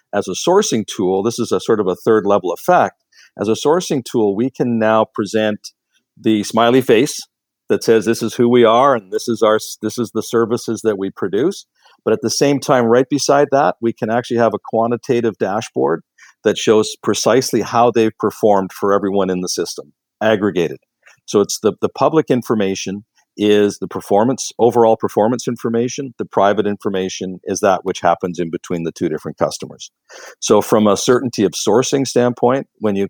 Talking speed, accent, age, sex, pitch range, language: 185 wpm, American, 50-69, male, 100-120 Hz, English